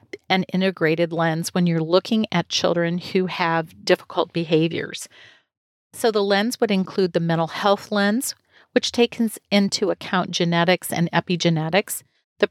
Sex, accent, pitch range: female, American, 170-200 Hz